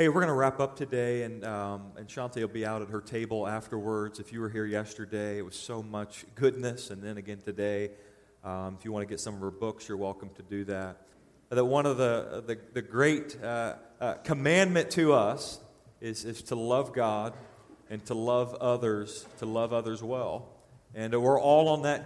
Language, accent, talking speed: English, American, 210 wpm